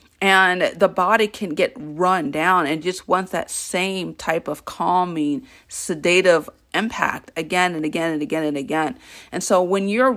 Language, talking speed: English, 165 wpm